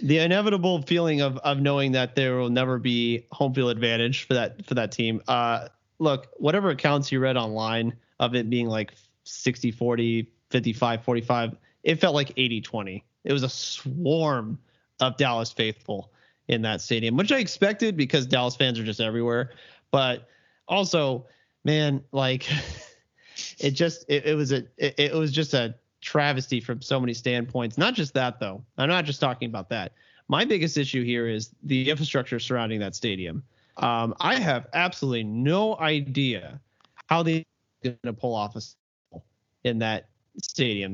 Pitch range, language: 115-145 Hz, English